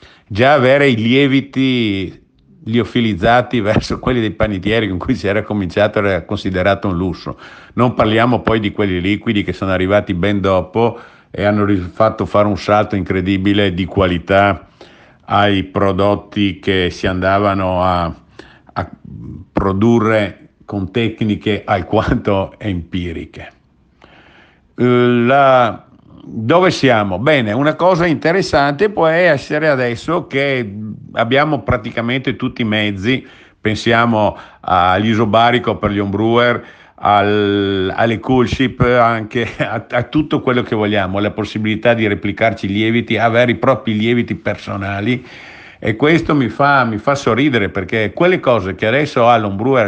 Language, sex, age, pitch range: Italian, male, 50-69, 100-130 Hz